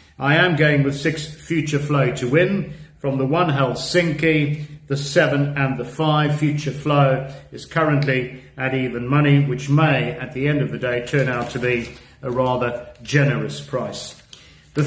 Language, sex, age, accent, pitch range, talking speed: English, male, 50-69, British, 125-150 Hz, 170 wpm